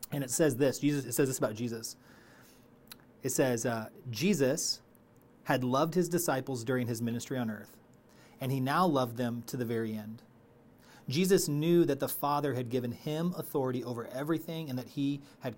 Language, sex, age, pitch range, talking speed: English, male, 30-49, 120-145 Hz, 180 wpm